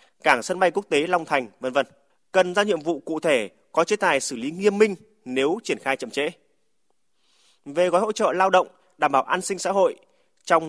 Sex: male